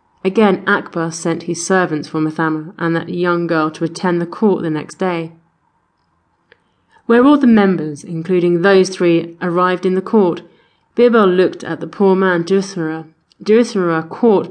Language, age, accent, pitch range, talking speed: English, 30-49, British, 165-205 Hz, 160 wpm